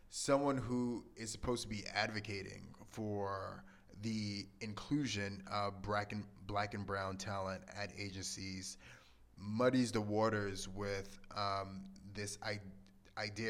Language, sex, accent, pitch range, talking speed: English, male, American, 100-115 Hz, 110 wpm